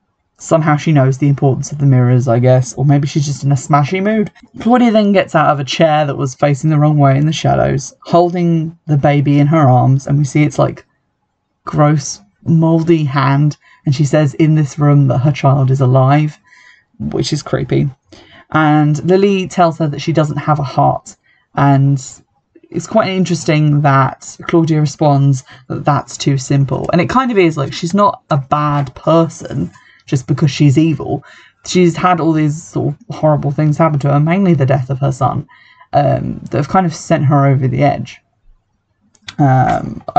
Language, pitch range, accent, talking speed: English, 135-165 Hz, British, 190 wpm